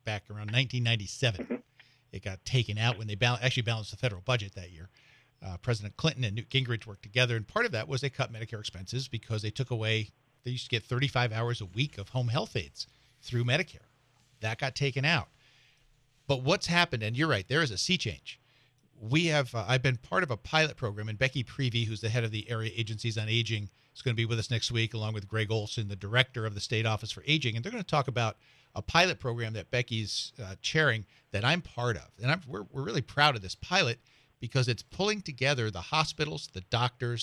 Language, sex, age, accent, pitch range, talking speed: English, male, 50-69, American, 110-135 Hz, 230 wpm